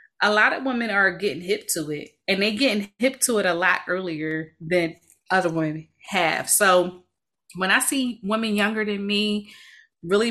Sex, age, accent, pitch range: female, 20-39, American, 180-235 Hz